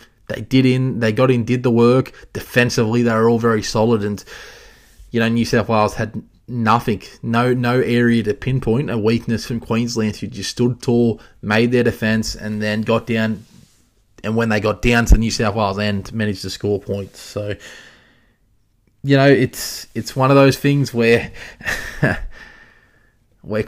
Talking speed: 170 wpm